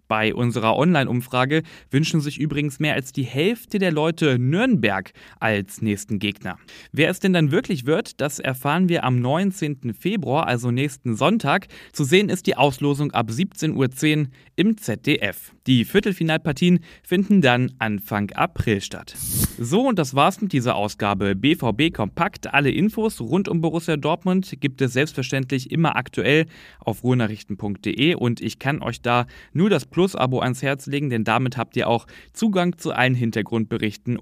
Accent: German